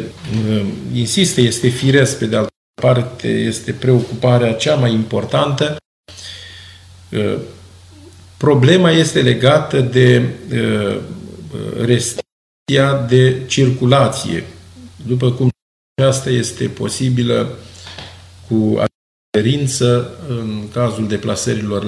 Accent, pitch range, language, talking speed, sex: native, 95-125 Hz, Romanian, 80 wpm, male